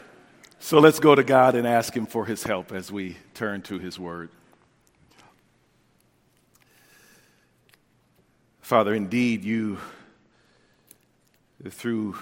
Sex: male